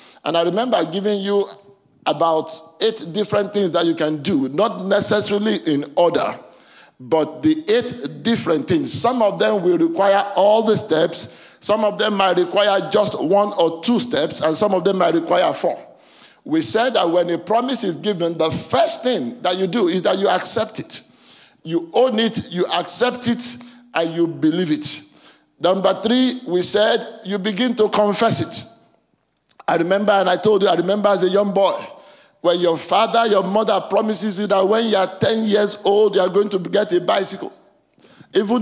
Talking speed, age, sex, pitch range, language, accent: 185 wpm, 50-69, male, 175-225 Hz, English, French